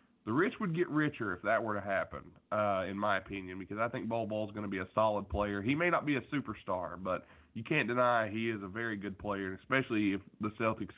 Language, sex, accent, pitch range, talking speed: English, male, American, 100-135 Hz, 245 wpm